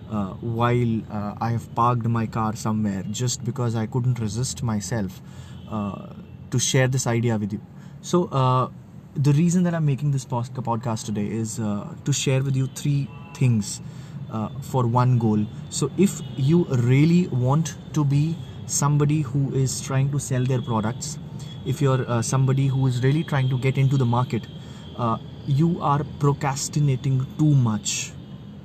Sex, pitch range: male, 120-145 Hz